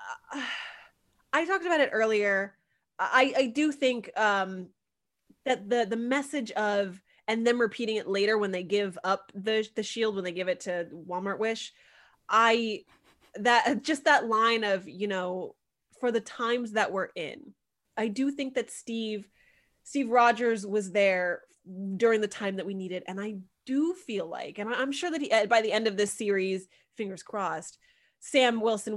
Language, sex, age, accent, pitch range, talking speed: English, female, 20-39, American, 190-230 Hz, 170 wpm